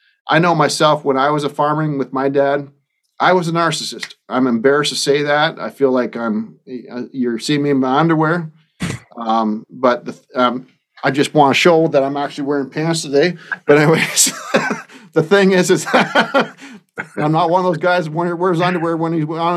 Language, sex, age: English, male, 40-59